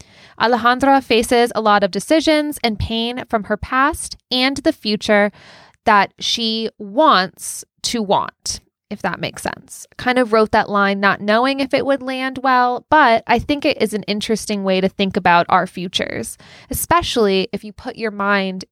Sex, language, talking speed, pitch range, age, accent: female, English, 175 wpm, 200-245 Hz, 20-39, American